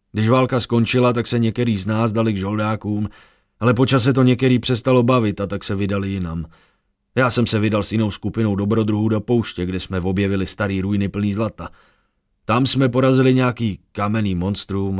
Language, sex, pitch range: Czech, male, 95-115 Hz